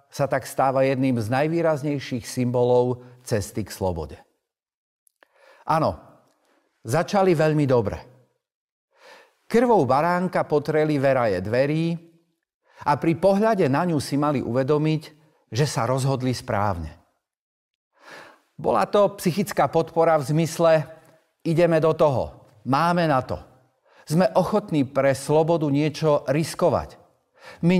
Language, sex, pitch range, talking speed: Slovak, male, 120-165 Hz, 110 wpm